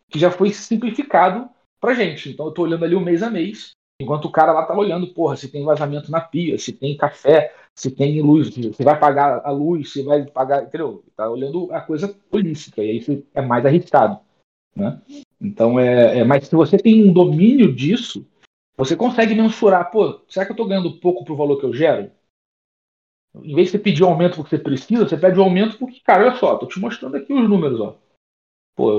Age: 40-59